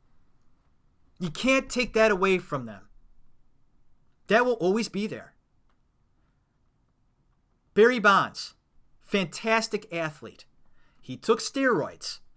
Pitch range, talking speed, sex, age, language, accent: 145-215 Hz, 90 wpm, male, 30-49, English, American